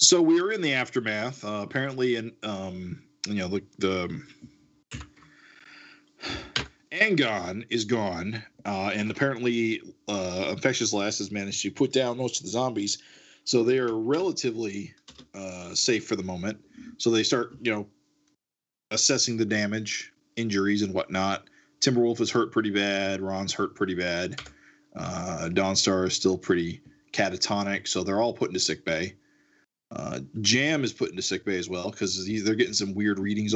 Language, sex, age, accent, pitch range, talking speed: English, male, 40-59, American, 95-120 Hz, 160 wpm